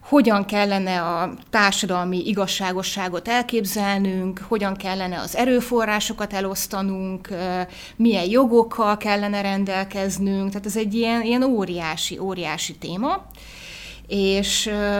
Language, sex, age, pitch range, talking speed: Hungarian, female, 30-49, 190-225 Hz, 95 wpm